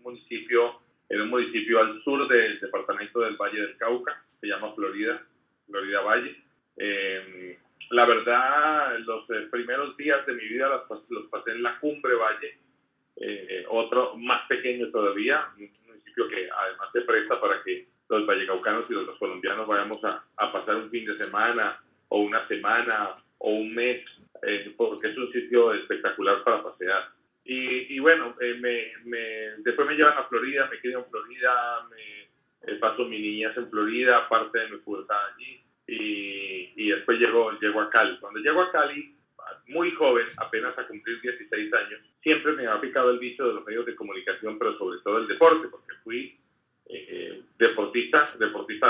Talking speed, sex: 175 wpm, male